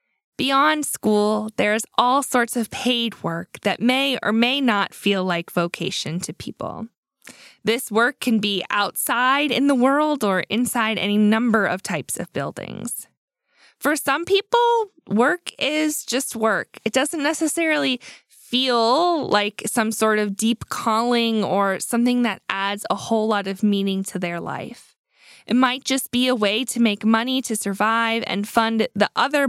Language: English